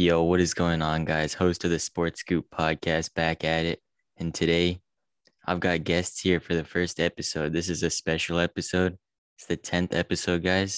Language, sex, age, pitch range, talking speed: English, male, 20-39, 80-90 Hz, 195 wpm